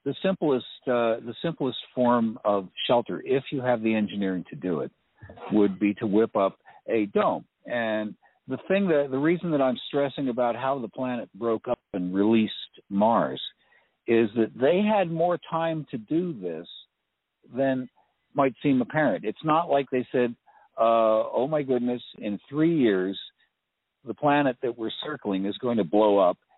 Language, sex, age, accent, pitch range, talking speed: English, male, 60-79, American, 110-140 Hz, 170 wpm